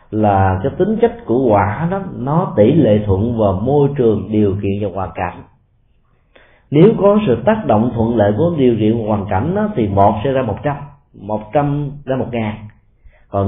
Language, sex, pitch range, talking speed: Vietnamese, male, 105-145 Hz, 195 wpm